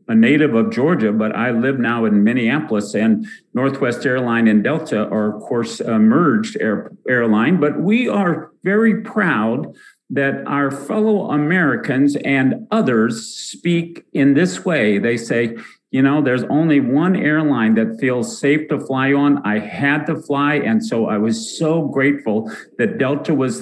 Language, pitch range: English, 130-175 Hz